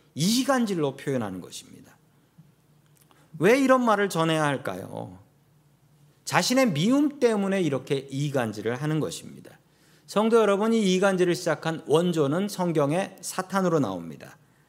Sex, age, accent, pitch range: male, 40-59, native, 145-190 Hz